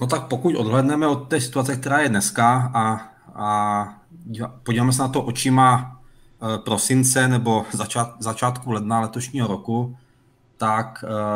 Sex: male